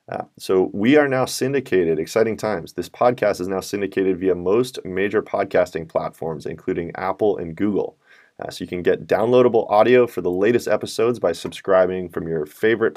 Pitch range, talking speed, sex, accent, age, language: 95-120 Hz, 175 wpm, male, American, 30-49, English